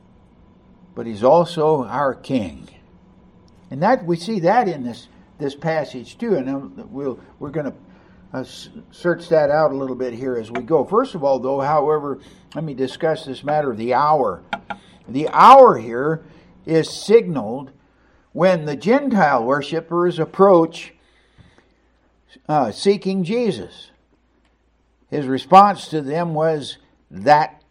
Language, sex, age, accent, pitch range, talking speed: English, male, 60-79, American, 130-180 Hz, 135 wpm